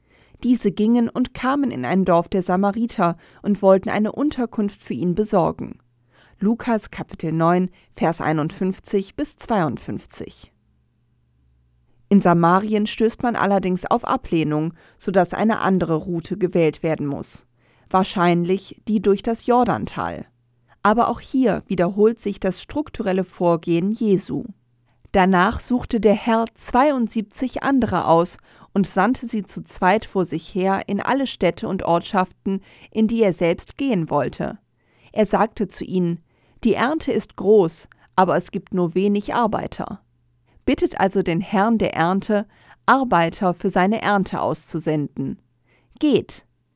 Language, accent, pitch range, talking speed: German, German, 165-220 Hz, 130 wpm